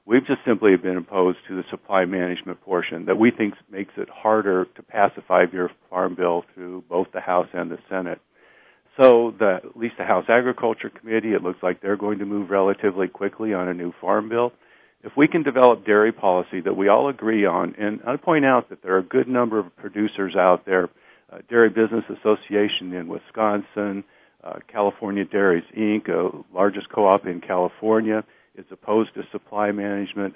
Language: English